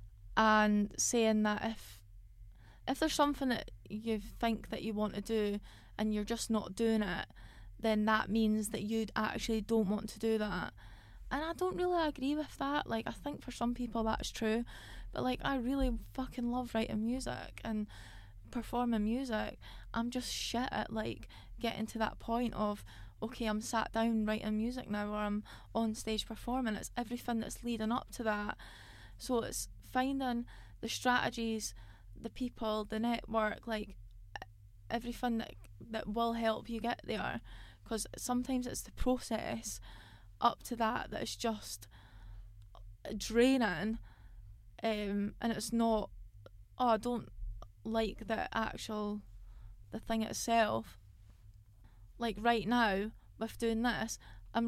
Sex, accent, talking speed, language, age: female, British, 150 wpm, English, 20-39